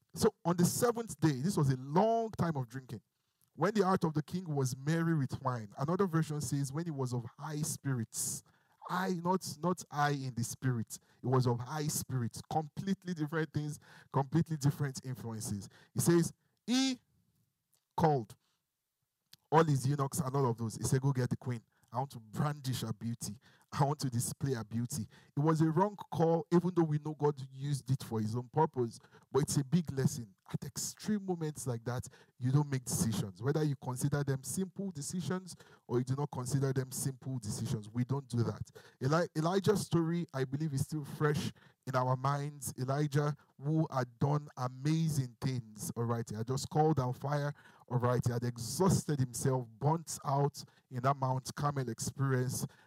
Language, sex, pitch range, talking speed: English, male, 130-160 Hz, 185 wpm